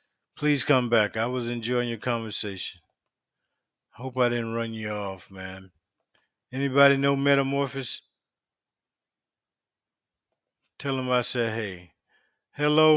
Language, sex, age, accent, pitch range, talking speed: English, male, 50-69, American, 105-140 Hz, 110 wpm